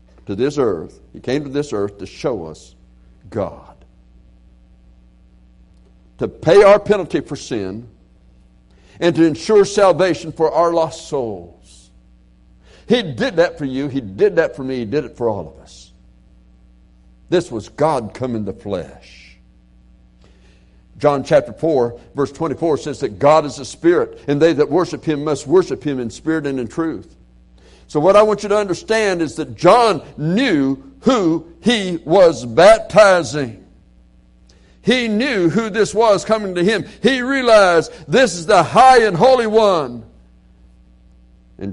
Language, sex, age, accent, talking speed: English, male, 60-79, American, 155 wpm